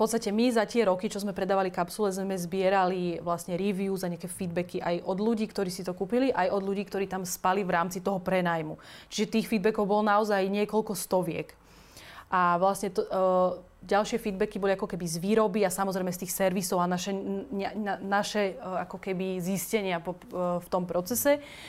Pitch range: 185-215 Hz